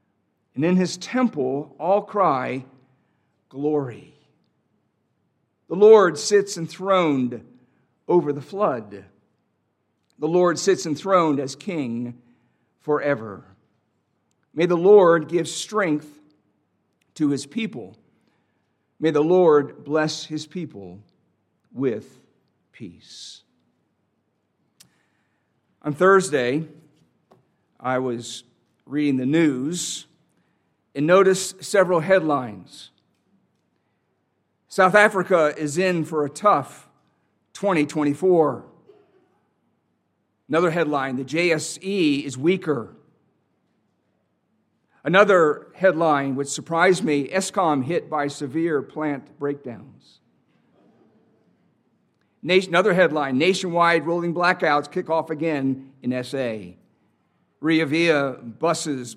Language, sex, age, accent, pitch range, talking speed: English, male, 50-69, American, 140-180 Hz, 85 wpm